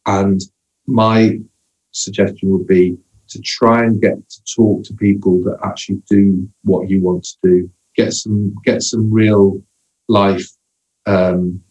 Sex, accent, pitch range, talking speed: male, British, 95-115 Hz, 145 wpm